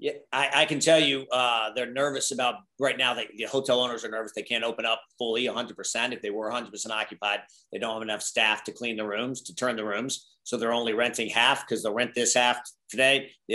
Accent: American